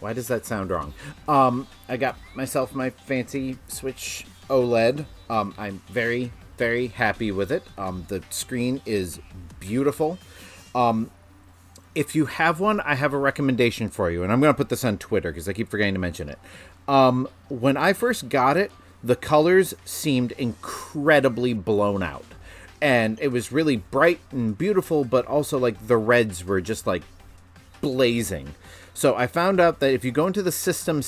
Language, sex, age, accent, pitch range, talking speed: English, male, 30-49, American, 95-140 Hz, 170 wpm